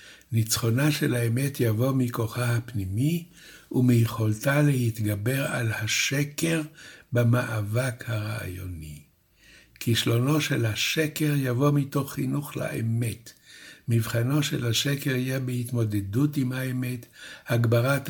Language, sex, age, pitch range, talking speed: Hebrew, male, 60-79, 115-140 Hz, 90 wpm